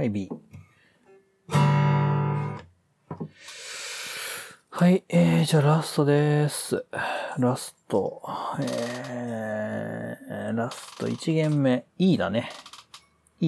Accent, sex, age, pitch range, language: native, male, 40-59, 130-175 Hz, Japanese